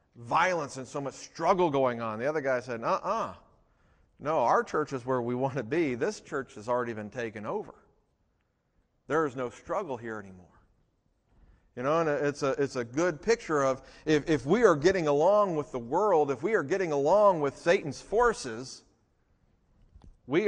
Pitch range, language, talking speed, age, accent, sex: 135-180 Hz, English, 185 wpm, 40-59, American, male